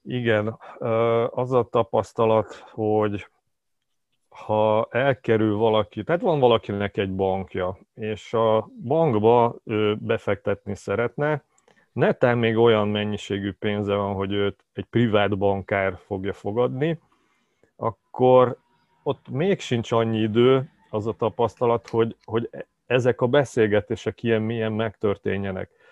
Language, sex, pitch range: Hungarian, male, 100-115 Hz